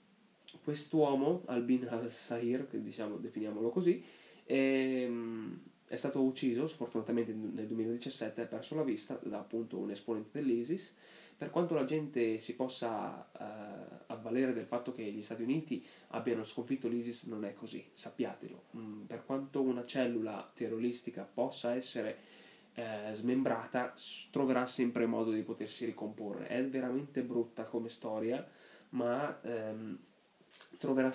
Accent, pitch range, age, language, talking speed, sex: native, 115-135 Hz, 20-39, Italian, 130 wpm, male